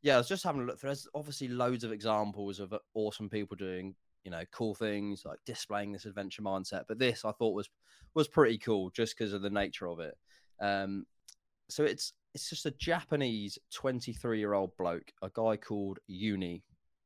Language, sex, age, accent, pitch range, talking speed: English, male, 20-39, British, 100-120 Hz, 185 wpm